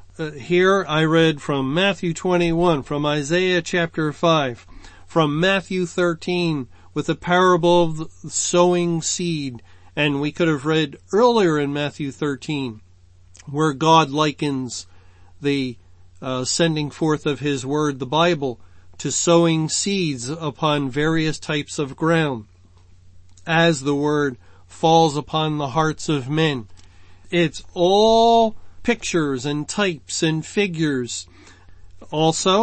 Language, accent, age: English, American, 40-59